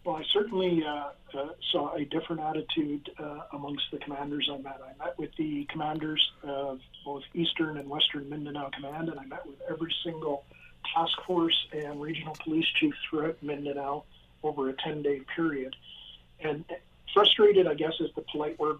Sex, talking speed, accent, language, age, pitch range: male, 170 wpm, American, English, 50-69, 140-165 Hz